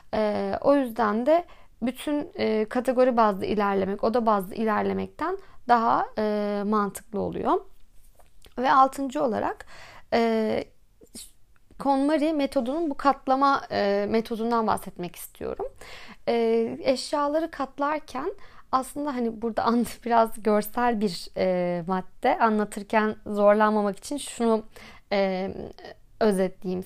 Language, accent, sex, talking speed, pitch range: Turkish, native, female, 100 wpm, 210-280 Hz